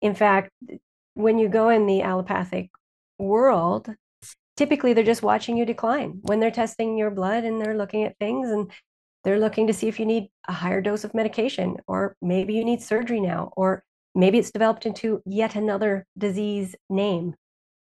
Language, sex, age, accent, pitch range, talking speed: English, female, 30-49, American, 200-245 Hz, 180 wpm